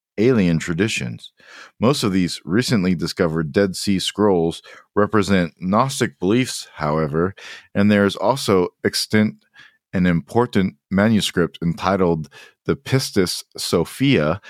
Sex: male